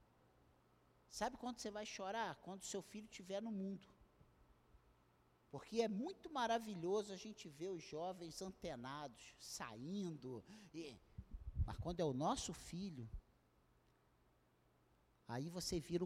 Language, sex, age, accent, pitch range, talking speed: Portuguese, male, 50-69, Brazilian, 140-210 Hz, 115 wpm